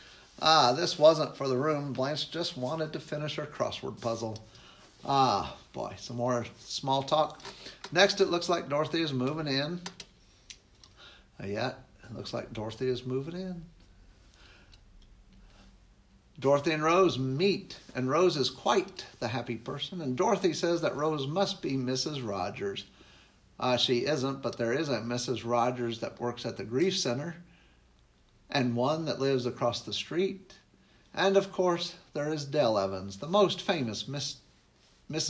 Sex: male